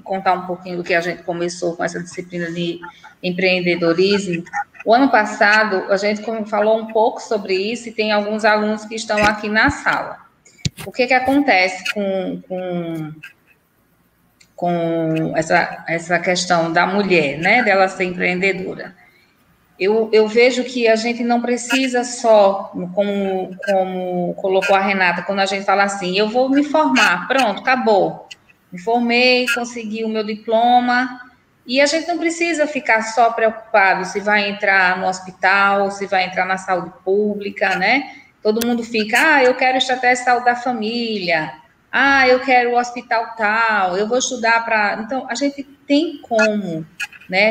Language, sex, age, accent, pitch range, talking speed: Portuguese, female, 20-39, Brazilian, 185-240 Hz, 160 wpm